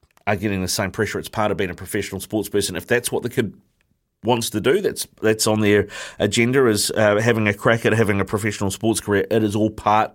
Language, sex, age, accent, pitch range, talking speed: English, male, 30-49, Australian, 100-115 Hz, 245 wpm